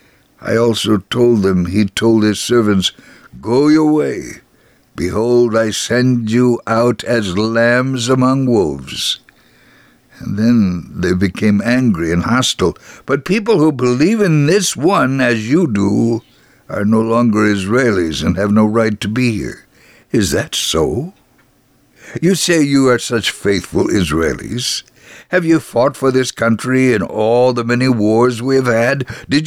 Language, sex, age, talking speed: English, male, 60-79, 150 wpm